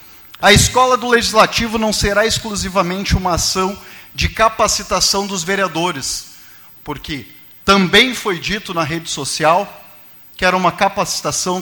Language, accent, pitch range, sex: Portuguese, Brazilian, 180-220 Hz, male